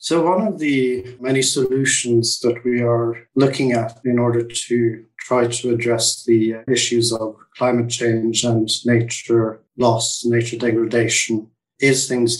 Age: 50-69